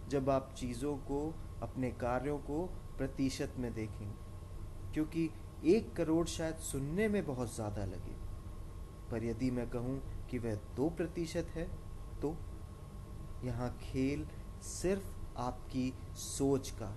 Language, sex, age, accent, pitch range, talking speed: Hindi, male, 30-49, native, 100-140 Hz, 125 wpm